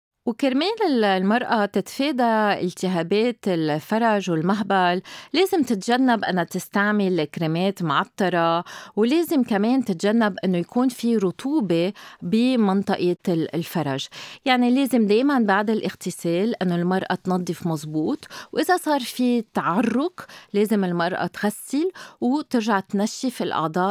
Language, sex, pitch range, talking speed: Arabic, female, 180-255 Hz, 100 wpm